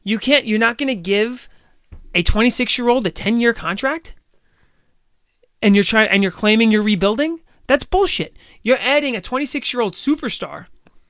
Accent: American